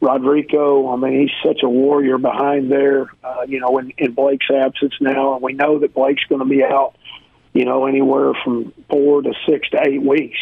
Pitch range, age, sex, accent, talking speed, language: 135-150 Hz, 40-59, male, American, 205 wpm, English